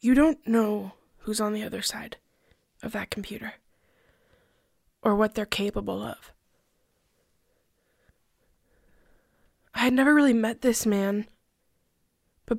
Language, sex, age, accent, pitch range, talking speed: English, female, 10-29, American, 190-220 Hz, 115 wpm